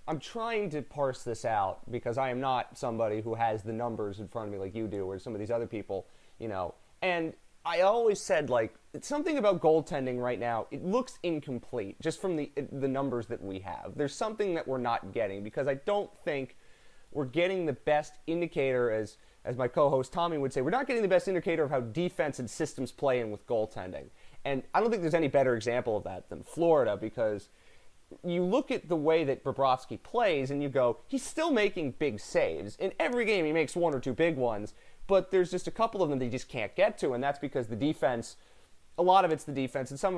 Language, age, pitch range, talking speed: English, 30-49, 120-170 Hz, 230 wpm